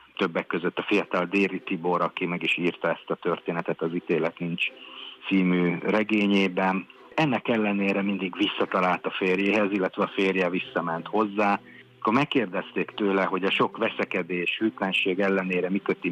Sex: male